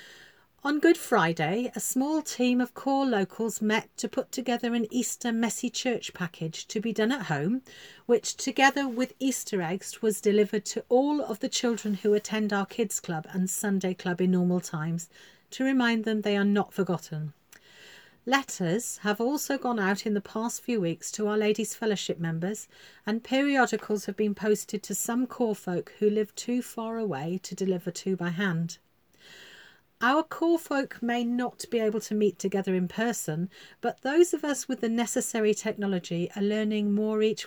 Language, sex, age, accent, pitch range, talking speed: English, female, 40-59, British, 185-240 Hz, 180 wpm